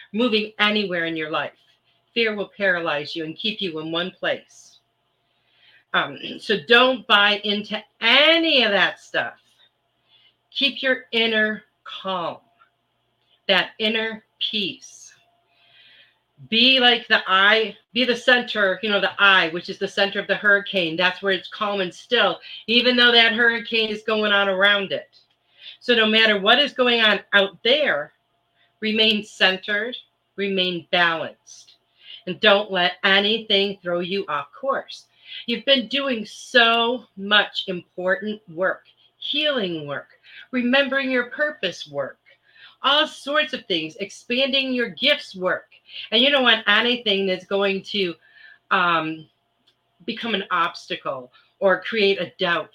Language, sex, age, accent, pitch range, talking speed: English, female, 40-59, American, 185-235 Hz, 140 wpm